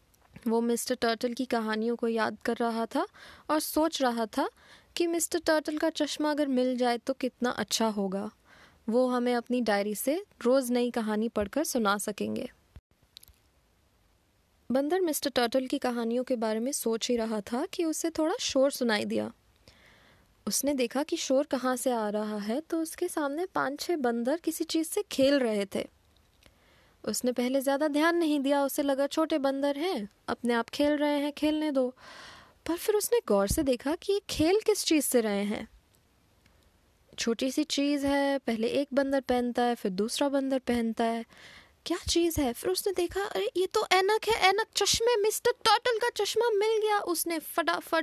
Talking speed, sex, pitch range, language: 180 wpm, female, 240-345 Hz, Hindi